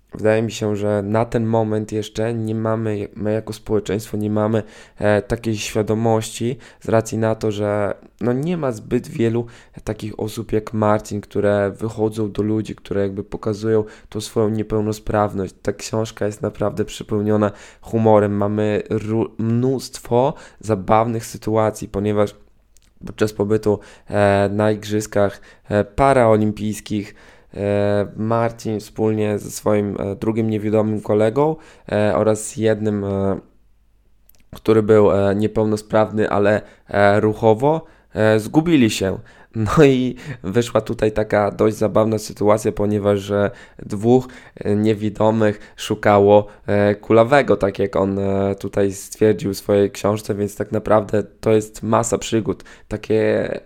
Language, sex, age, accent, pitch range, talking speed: Polish, male, 20-39, native, 105-115 Hz, 120 wpm